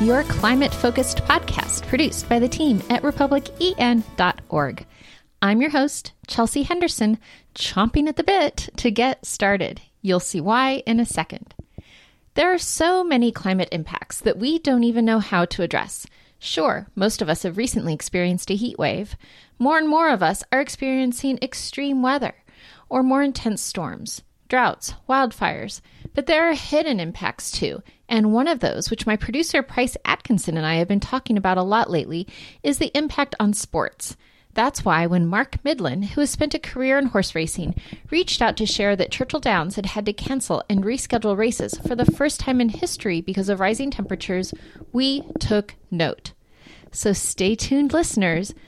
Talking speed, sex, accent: 170 wpm, female, American